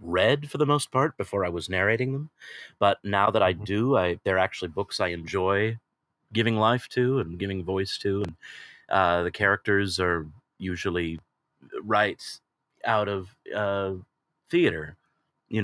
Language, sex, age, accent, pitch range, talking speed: English, male, 30-49, American, 90-110 Hz, 150 wpm